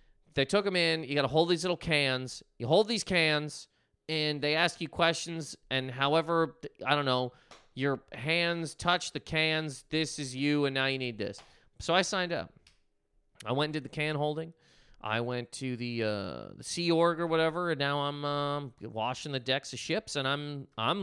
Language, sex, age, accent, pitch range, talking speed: English, male, 30-49, American, 130-185 Hz, 205 wpm